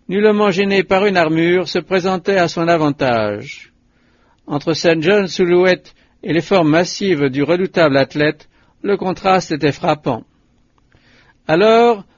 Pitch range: 155-190 Hz